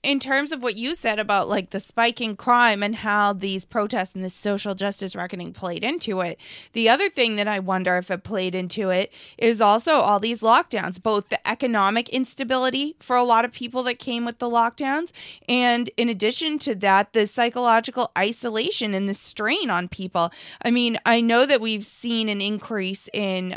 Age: 20-39